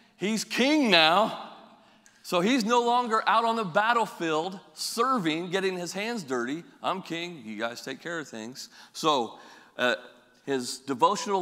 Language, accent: English, American